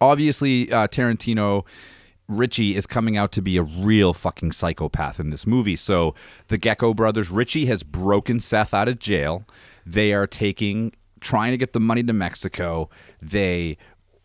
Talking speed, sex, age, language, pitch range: 160 wpm, male, 30-49, English, 90-115 Hz